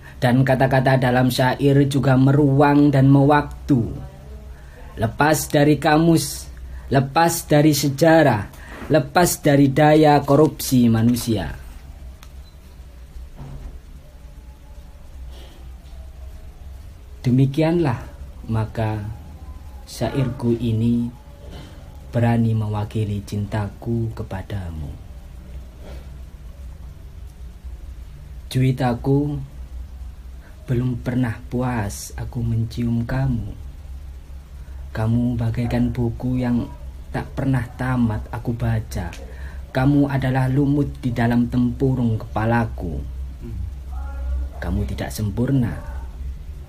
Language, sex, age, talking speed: Indonesian, male, 20-39, 70 wpm